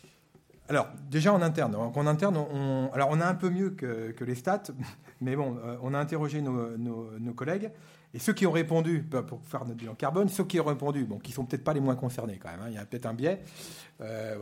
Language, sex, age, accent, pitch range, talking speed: French, male, 40-59, French, 115-150 Hz, 250 wpm